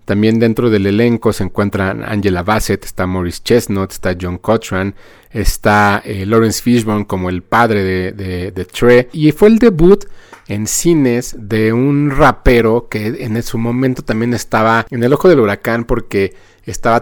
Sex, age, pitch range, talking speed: male, 30-49, 100-125 Hz, 165 wpm